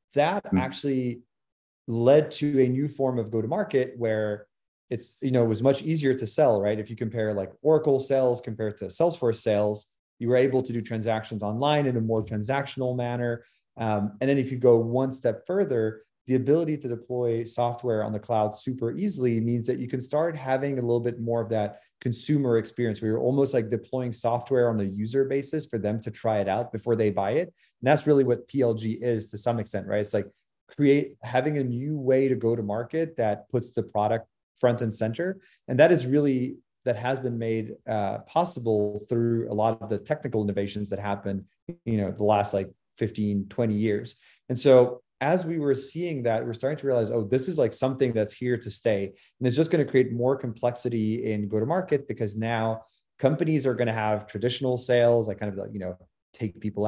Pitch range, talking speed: 110-130 Hz, 210 wpm